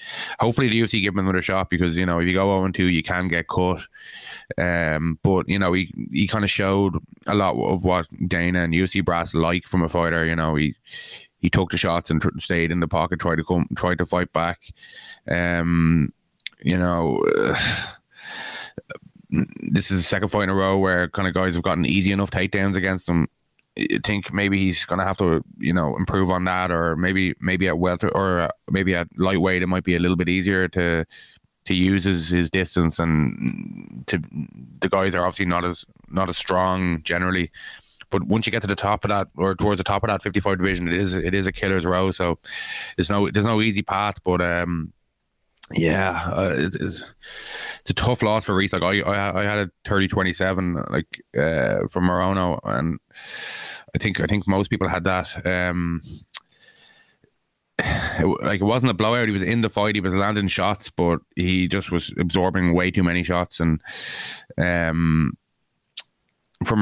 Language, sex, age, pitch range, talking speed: English, male, 20-39, 85-100 Hz, 195 wpm